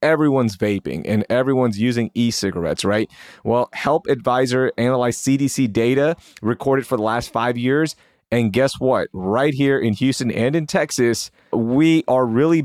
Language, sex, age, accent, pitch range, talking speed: English, male, 30-49, American, 115-145 Hz, 150 wpm